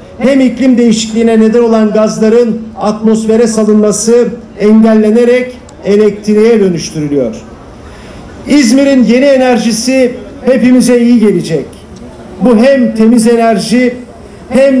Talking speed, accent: 90 wpm, native